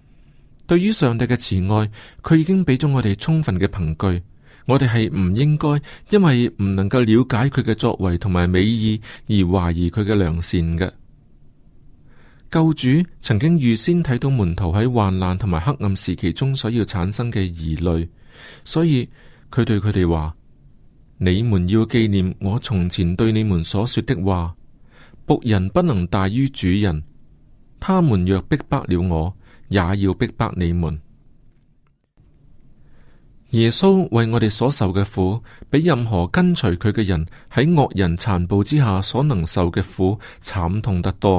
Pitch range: 95-130 Hz